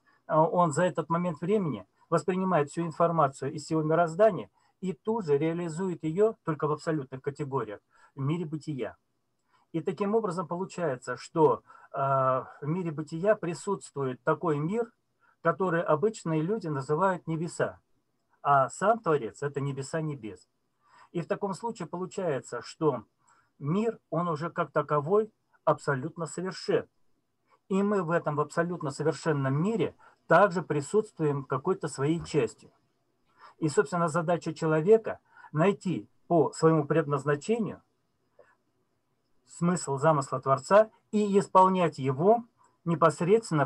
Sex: male